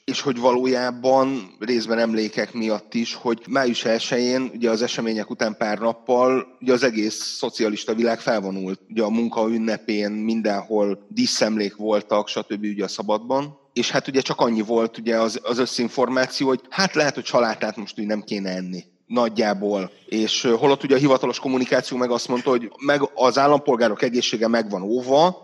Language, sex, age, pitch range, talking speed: Hungarian, male, 30-49, 105-125 Hz, 165 wpm